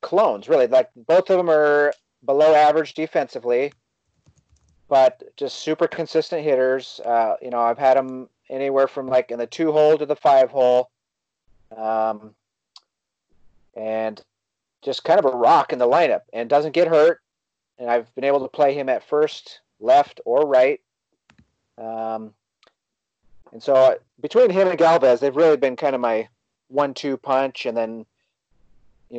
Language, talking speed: English, 160 wpm